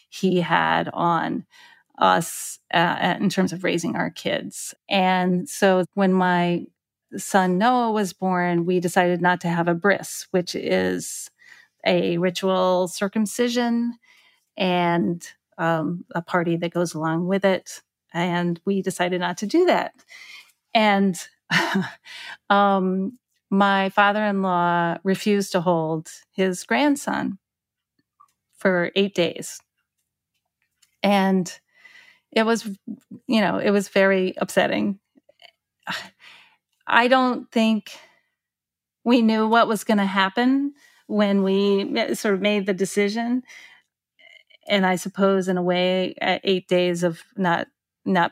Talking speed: 120 wpm